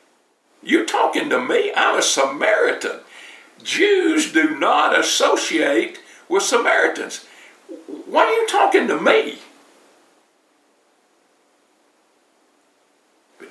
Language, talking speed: English, 90 wpm